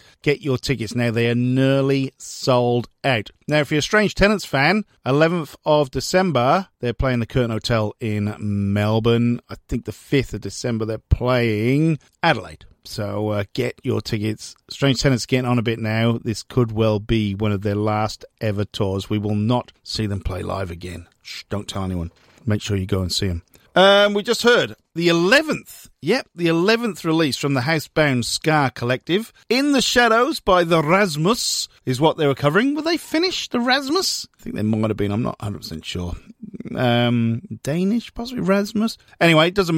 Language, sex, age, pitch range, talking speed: English, male, 40-59, 110-170 Hz, 185 wpm